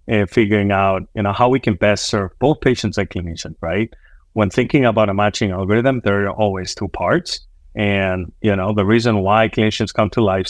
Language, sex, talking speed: English, male, 205 wpm